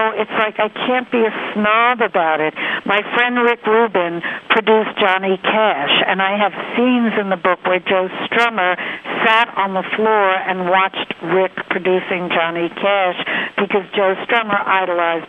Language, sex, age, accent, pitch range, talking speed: English, female, 60-79, American, 180-220 Hz, 155 wpm